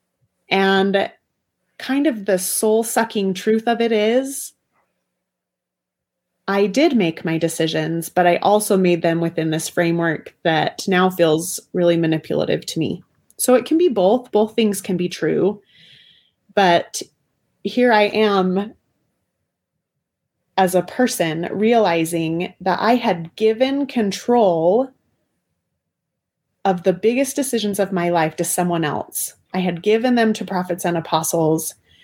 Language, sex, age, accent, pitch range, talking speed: English, female, 30-49, American, 175-220 Hz, 130 wpm